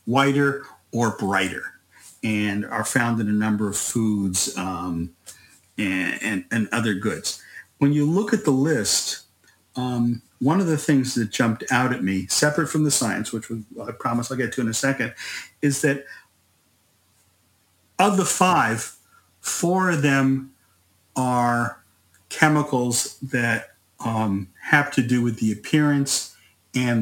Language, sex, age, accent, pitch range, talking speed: English, male, 50-69, American, 105-135 Hz, 140 wpm